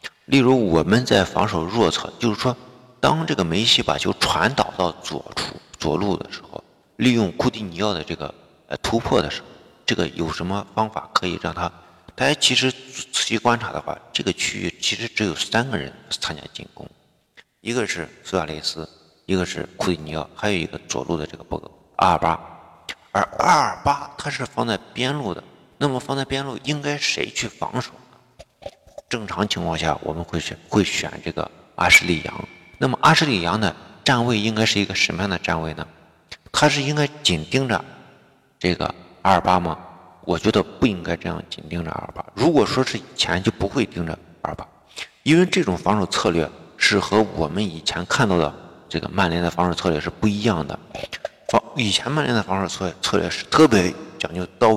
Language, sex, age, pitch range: Chinese, male, 50-69, 85-125 Hz